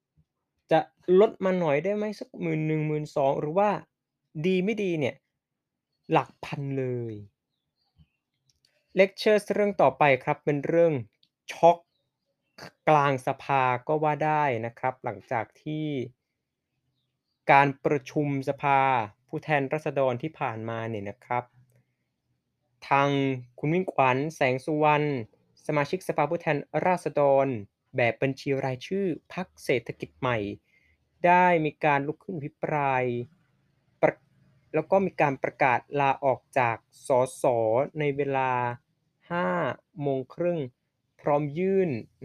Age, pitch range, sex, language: 20-39, 130-160 Hz, male, Thai